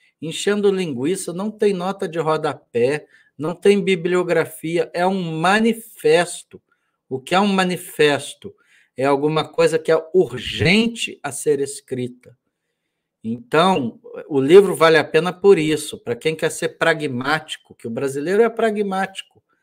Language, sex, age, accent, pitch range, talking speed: Portuguese, male, 60-79, Brazilian, 165-230 Hz, 140 wpm